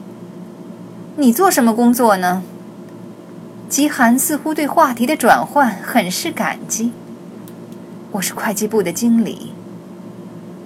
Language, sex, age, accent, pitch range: Chinese, female, 20-39, native, 190-245 Hz